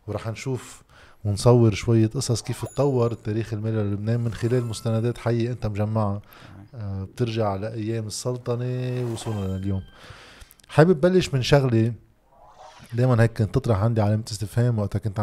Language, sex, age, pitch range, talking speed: Arabic, male, 20-39, 110-140 Hz, 135 wpm